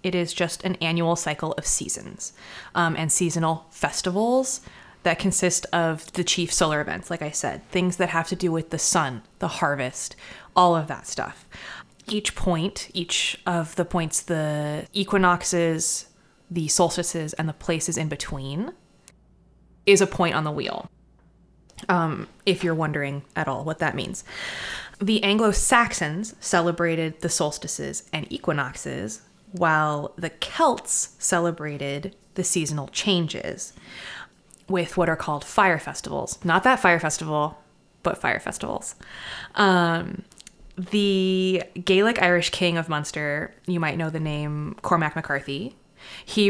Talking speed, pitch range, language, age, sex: 140 wpm, 160-185 Hz, English, 20-39, female